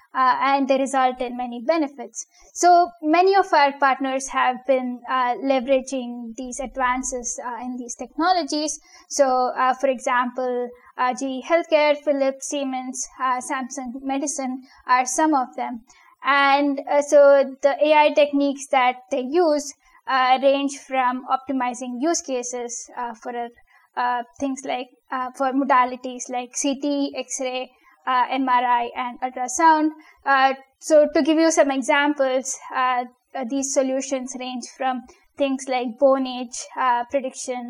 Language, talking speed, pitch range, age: English, 135 wpm, 255-285 Hz, 20-39